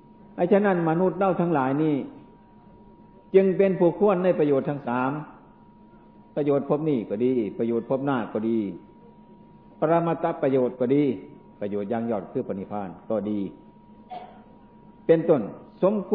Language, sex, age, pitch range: Thai, male, 60-79, 115-175 Hz